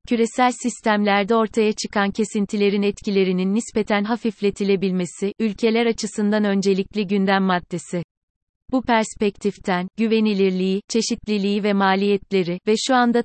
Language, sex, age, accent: Turkish, female, 30-49, native